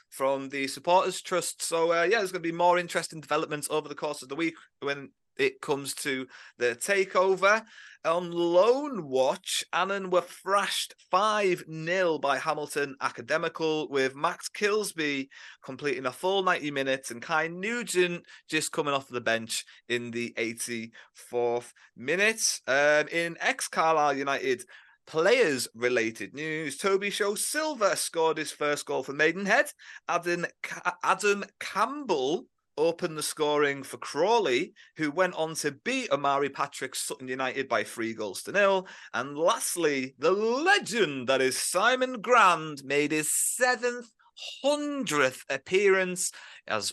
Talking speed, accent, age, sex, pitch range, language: 140 wpm, British, 30-49, male, 140-195 Hz, English